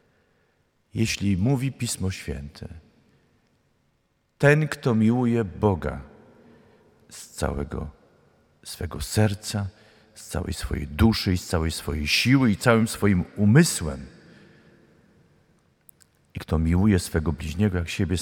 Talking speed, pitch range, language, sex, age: 100 wpm, 85-120 Hz, Polish, male, 50-69